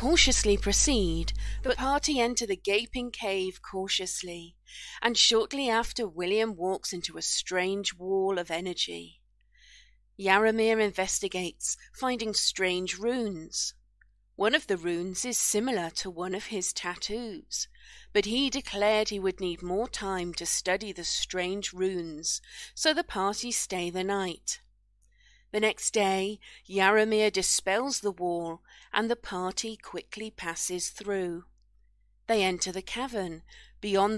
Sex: female